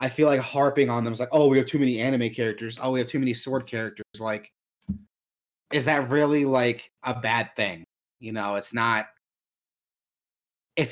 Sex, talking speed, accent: male, 190 wpm, American